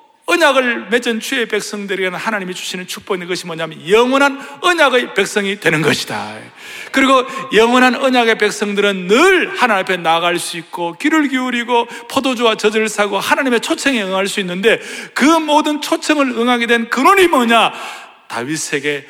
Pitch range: 145-235 Hz